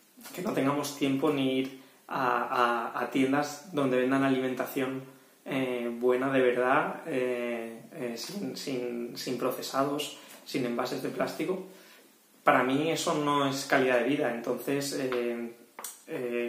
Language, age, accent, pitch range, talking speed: English, 20-39, Spanish, 125-145 Hz, 125 wpm